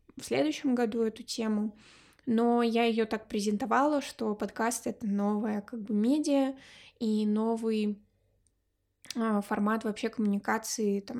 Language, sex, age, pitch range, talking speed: Russian, female, 20-39, 215-255 Hz, 120 wpm